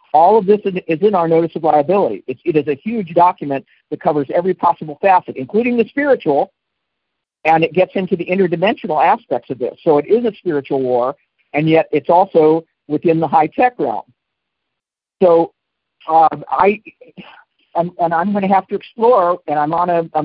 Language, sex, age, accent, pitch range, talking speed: English, male, 60-79, American, 150-190 Hz, 185 wpm